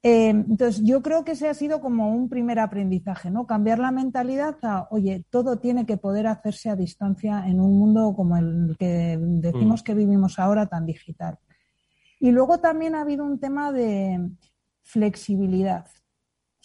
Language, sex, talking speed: Spanish, female, 170 wpm